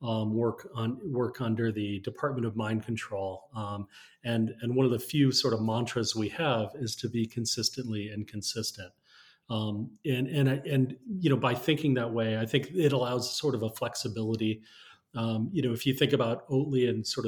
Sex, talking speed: male, 195 wpm